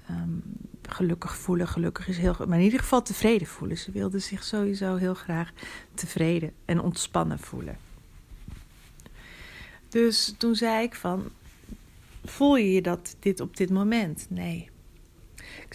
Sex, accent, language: female, Dutch, Dutch